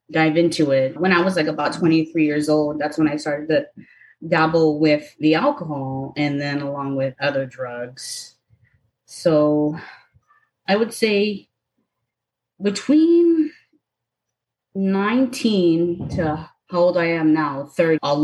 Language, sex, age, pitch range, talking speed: English, female, 20-39, 150-180 Hz, 130 wpm